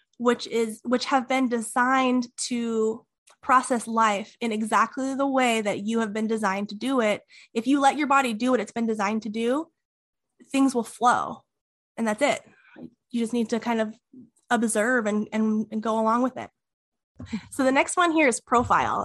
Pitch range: 225-270 Hz